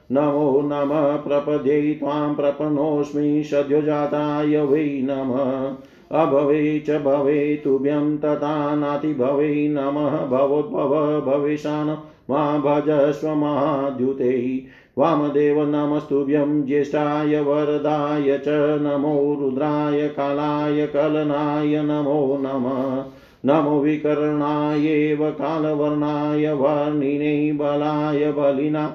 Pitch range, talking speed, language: 140-150 Hz, 75 wpm, Hindi